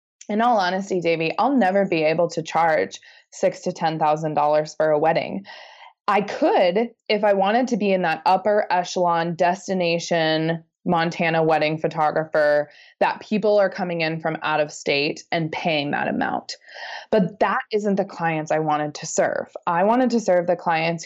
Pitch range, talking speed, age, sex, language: 160-195 Hz, 175 wpm, 20-39, female, English